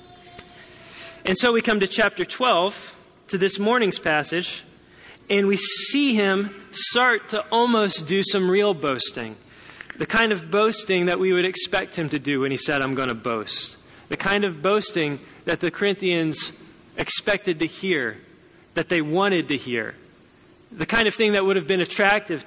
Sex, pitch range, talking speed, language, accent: male, 150-200 Hz, 170 wpm, English, American